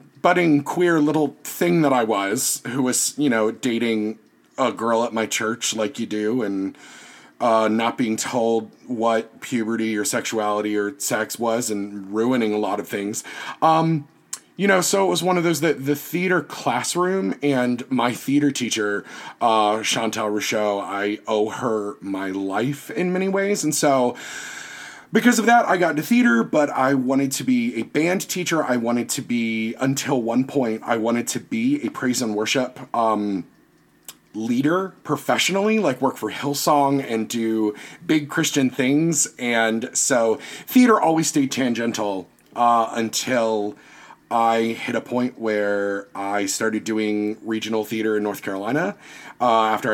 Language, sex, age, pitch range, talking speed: English, male, 30-49, 110-150 Hz, 160 wpm